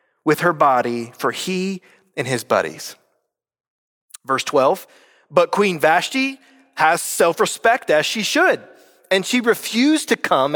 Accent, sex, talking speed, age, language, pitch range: American, male, 130 wpm, 30-49, English, 170-235 Hz